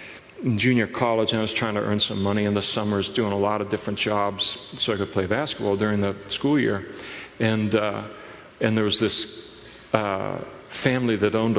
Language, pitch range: English, 105-120 Hz